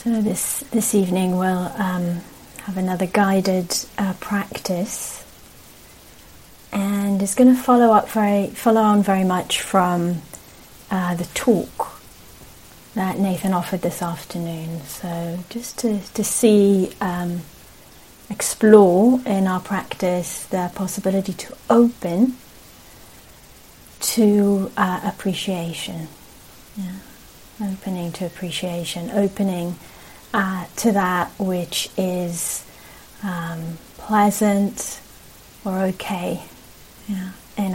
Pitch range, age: 175-205 Hz, 30-49